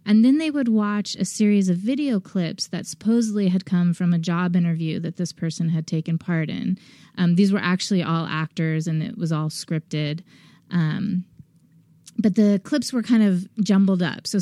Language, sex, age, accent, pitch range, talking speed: English, female, 20-39, American, 170-205 Hz, 190 wpm